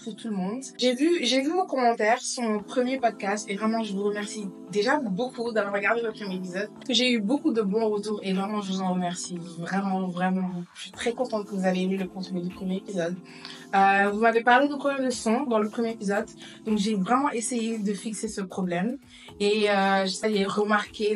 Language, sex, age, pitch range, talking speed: French, female, 20-39, 190-235 Hz, 215 wpm